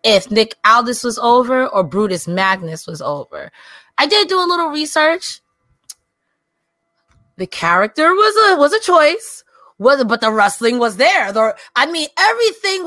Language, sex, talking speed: English, female, 155 wpm